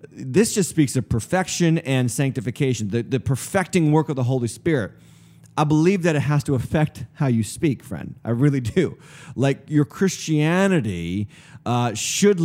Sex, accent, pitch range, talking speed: male, American, 135-170 Hz, 165 wpm